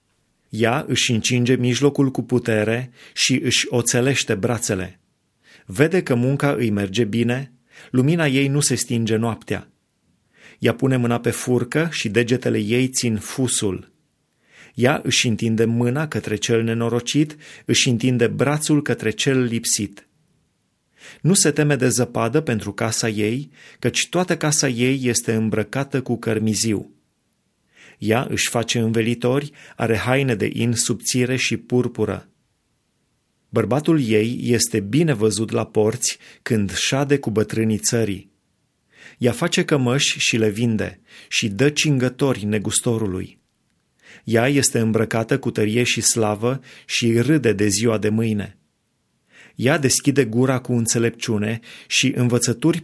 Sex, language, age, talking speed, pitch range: male, Romanian, 30-49, 130 wpm, 110-130 Hz